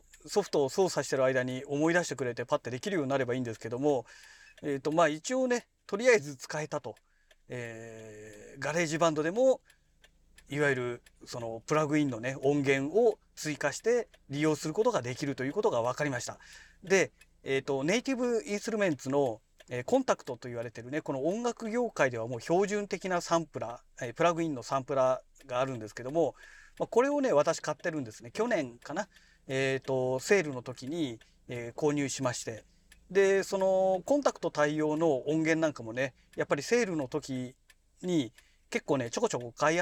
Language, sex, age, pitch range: Japanese, male, 40-59, 130-180 Hz